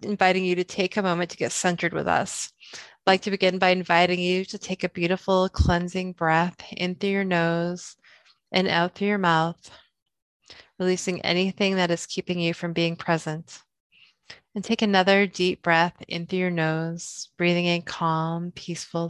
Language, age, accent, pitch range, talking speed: English, 20-39, American, 170-185 Hz, 175 wpm